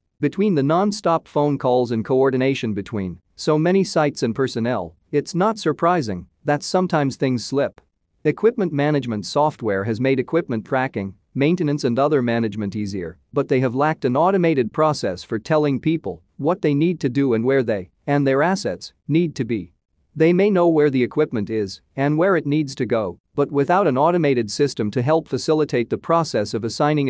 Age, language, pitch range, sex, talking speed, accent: 40-59, English, 115-150 Hz, male, 180 wpm, American